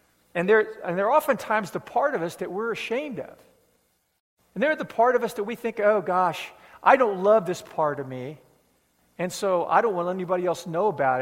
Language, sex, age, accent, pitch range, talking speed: English, male, 50-69, American, 135-205 Hz, 220 wpm